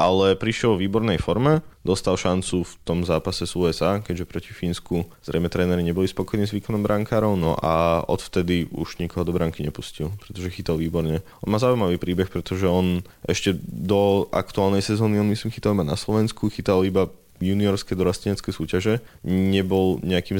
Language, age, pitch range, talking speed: Slovak, 20-39, 85-100 Hz, 165 wpm